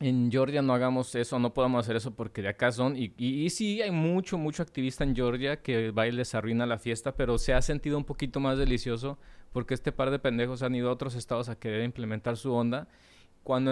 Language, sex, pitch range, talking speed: Spanish, male, 110-130 Hz, 230 wpm